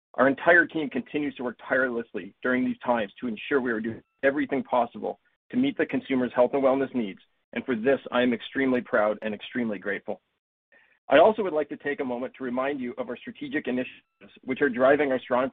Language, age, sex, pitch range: English, 40-59, male, 125-170 Hz